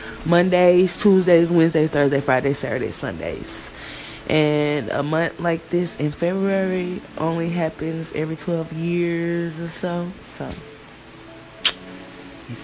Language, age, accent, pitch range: English, 20-39, American, 140-180 Hz